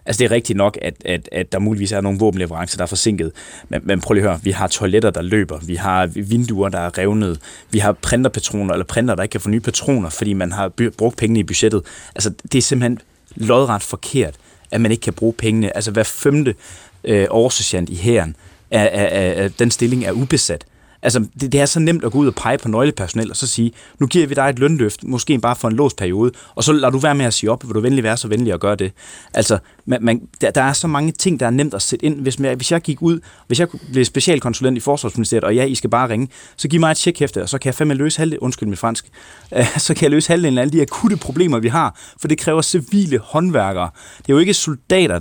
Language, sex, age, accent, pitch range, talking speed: Danish, male, 20-39, native, 105-140 Hz, 245 wpm